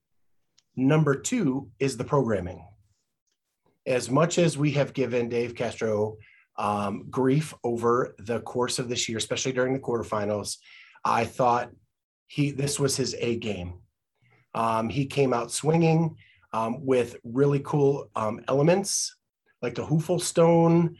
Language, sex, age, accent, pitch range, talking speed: English, male, 30-49, American, 115-145 Hz, 135 wpm